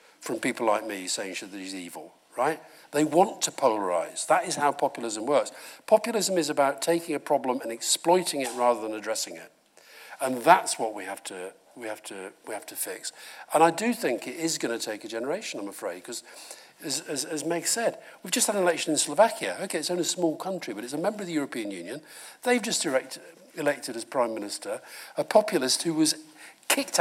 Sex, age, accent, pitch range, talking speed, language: male, 50-69, British, 135-205 Hz, 210 wpm, English